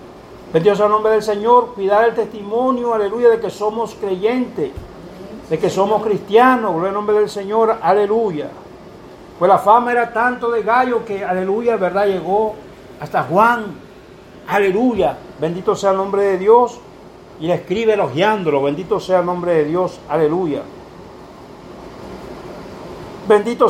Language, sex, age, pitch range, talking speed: Spanish, male, 60-79, 200-235 Hz, 140 wpm